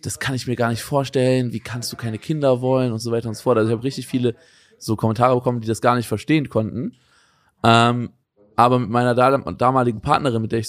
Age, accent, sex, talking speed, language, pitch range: 20-39, German, male, 235 wpm, German, 110-130 Hz